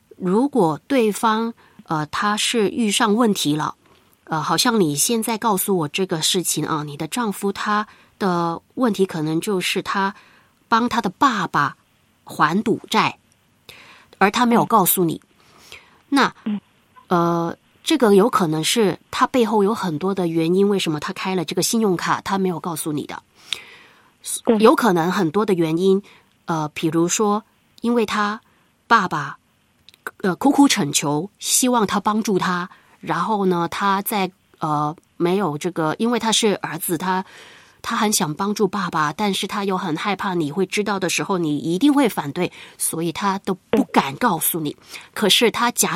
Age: 20-39